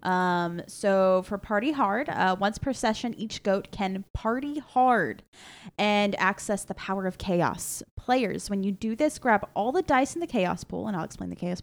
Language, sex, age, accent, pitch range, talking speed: English, female, 10-29, American, 185-230 Hz, 195 wpm